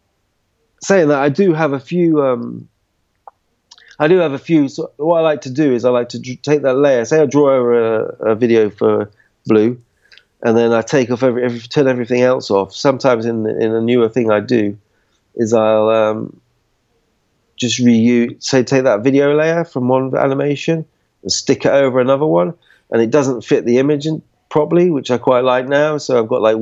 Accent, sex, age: British, male, 40-59